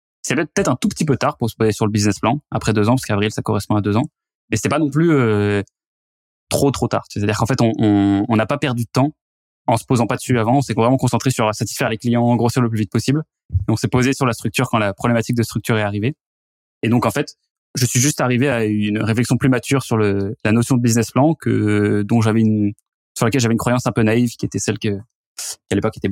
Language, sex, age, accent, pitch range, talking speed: French, male, 20-39, French, 105-125 Hz, 270 wpm